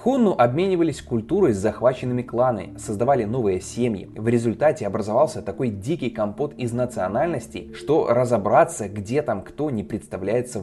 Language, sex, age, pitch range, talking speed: Russian, male, 20-39, 105-150 Hz, 135 wpm